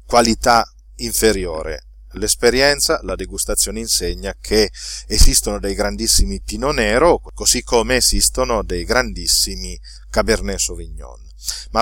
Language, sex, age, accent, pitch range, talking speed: Italian, male, 40-59, native, 100-155 Hz, 100 wpm